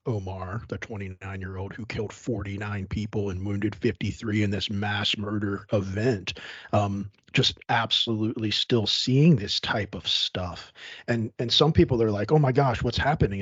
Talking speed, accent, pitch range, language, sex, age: 165 wpm, American, 100-130 Hz, English, male, 40-59